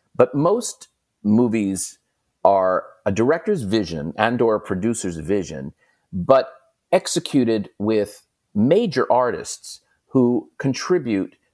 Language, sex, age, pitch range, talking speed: English, male, 40-59, 95-130 Hz, 100 wpm